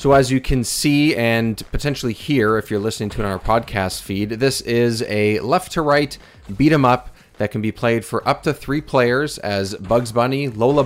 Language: English